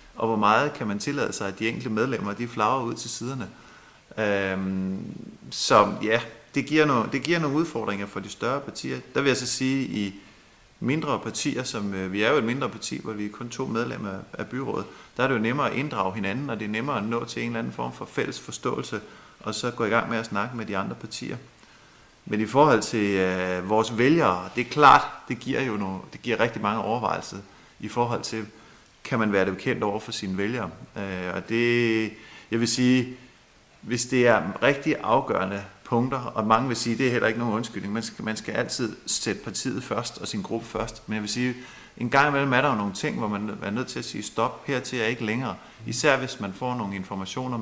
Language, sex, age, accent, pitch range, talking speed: Danish, male, 30-49, native, 100-120 Hz, 235 wpm